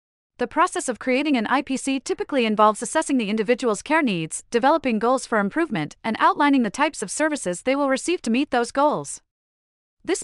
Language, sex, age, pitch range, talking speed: English, female, 30-49, 210-290 Hz, 180 wpm